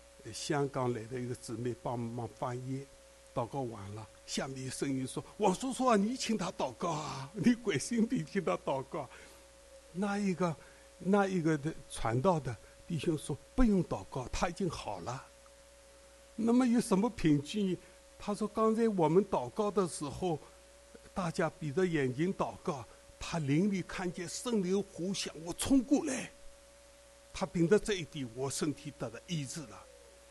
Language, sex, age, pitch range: English, male, 60-79, 130-190 Hz